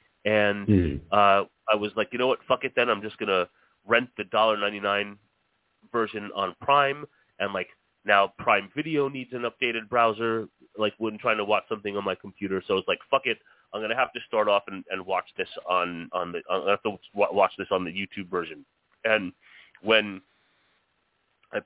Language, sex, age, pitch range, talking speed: English, male, 30-49, 95-115 Hz, 200 wpm